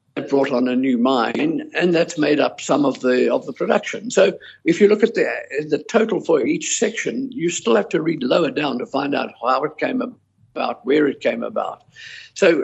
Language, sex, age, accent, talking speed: English, male, 50-69, British, 215 wpm